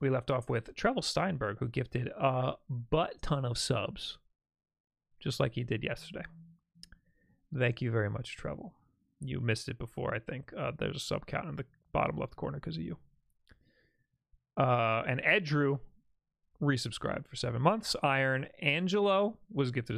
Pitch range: 115-145 Hz